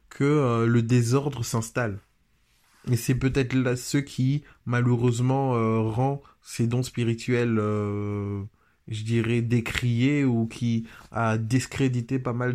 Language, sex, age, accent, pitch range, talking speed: French, male, 20-39, French, 115-130 Hz, 130 wpm